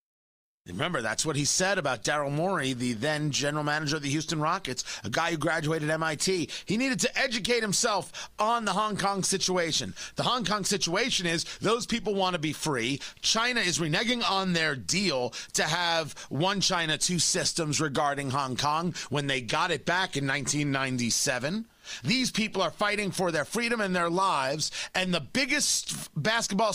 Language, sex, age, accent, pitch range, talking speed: English, male, 30-49, American, 155-210 Hz, 175 wpm